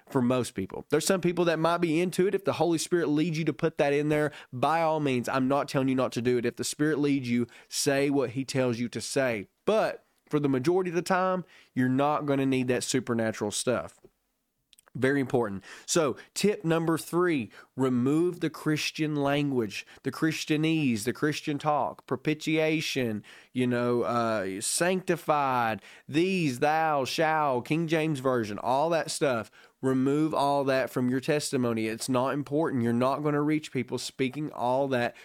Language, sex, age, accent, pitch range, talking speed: English, male, 20-39, American, 120-155 Hz, 180 wpm